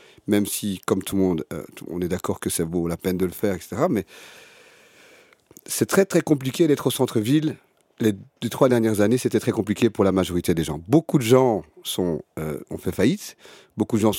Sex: male